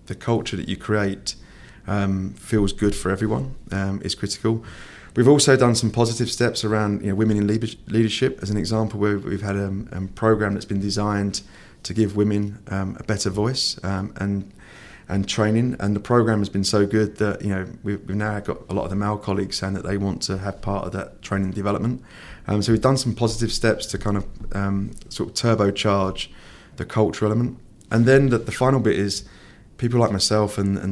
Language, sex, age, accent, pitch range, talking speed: English, male, 20-39, British, 95-110 Hz, 215 wpm